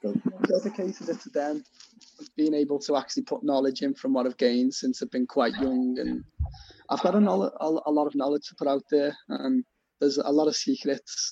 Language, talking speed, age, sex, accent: English, 215 wpm, 20-39, male, British